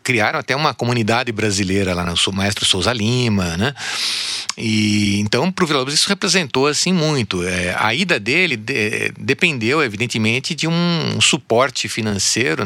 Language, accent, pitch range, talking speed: Portuguese, Brazilian, 95-120 Hz, 150 wpm